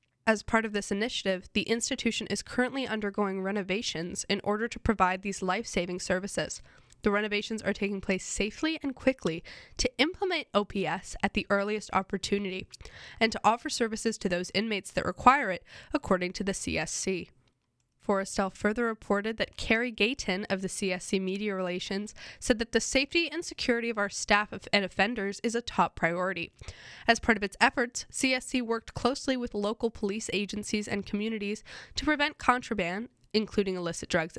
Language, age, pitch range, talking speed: English, 10-29, 190-235 Hz, 160 wpm